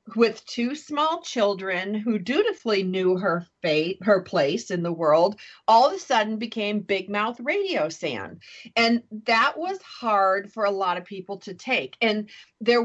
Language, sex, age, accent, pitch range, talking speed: English, female, 40-59, American, 195-255 Hz, 170 wpm